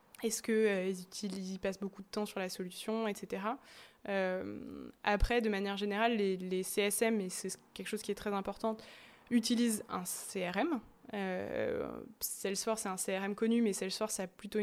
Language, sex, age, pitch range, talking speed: French, female, 20-39, 195-220 Hz, 170 wpm